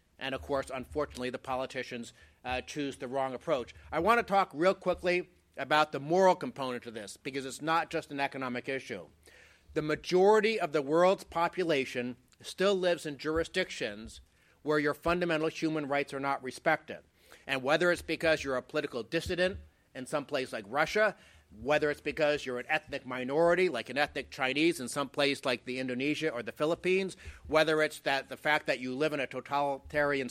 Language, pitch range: English, 135-165 Hz